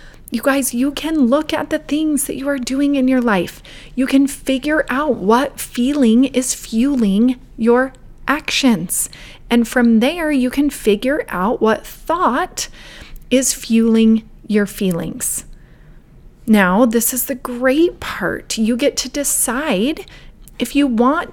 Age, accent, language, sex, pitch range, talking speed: 30-49, American, English, female, 215-275 Hz, 145 wpm